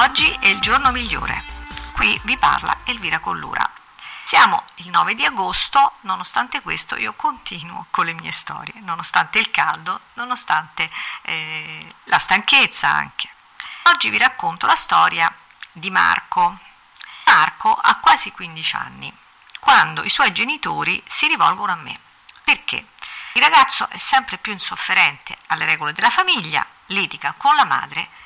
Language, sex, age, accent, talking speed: Italian, female, 50-69, native, 140 wpm